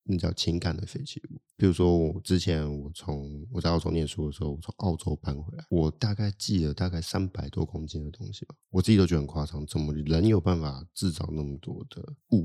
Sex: male